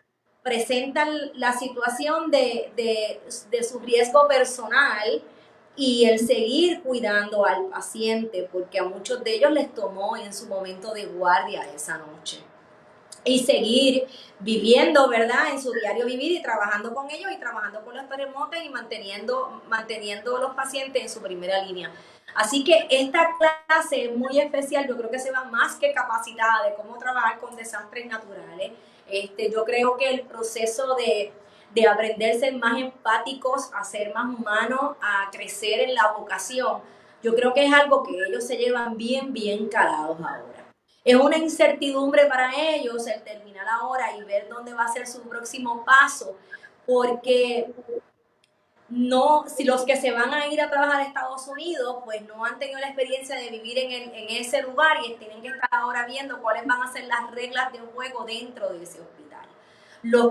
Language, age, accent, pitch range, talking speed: Spanish, 30-49, American, 225-270 Hz, 170 wpm